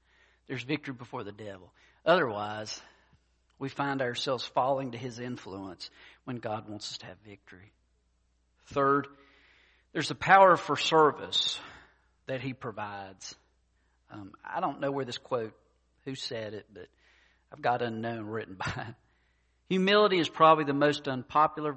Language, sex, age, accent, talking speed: English, male, 50-69, American, 145 wpm